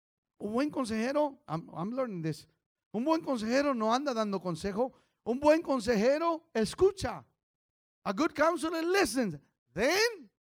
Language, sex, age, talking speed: English, male, 40-59, 130 wpm